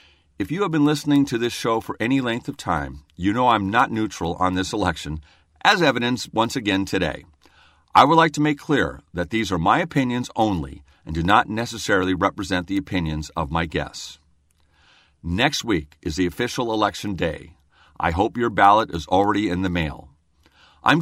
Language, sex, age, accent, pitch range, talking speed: English, male, 50-69, American, 80-120 Hz, 185 wpm